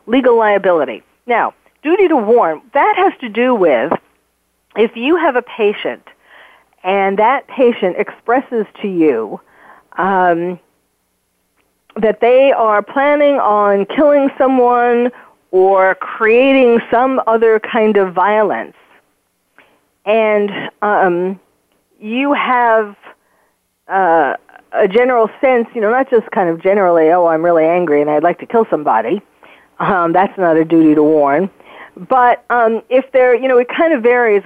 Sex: female